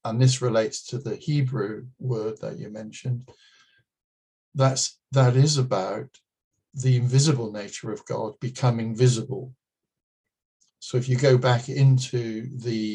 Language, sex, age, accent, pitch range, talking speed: English, male, 60-79, British, 110-130 Hz, 125 wpm